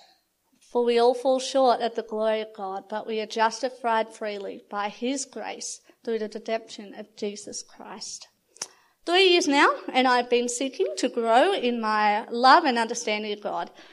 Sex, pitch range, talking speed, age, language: female, 220-265 Hz, 170 wpm, 30-49, English